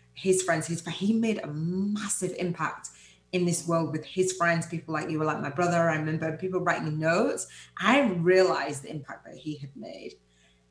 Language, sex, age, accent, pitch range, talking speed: English, female, 30-49, British, 135-170 Hz, 190 wpm